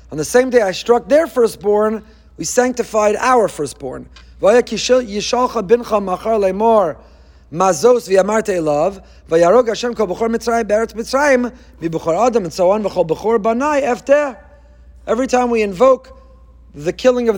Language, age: English, 30-49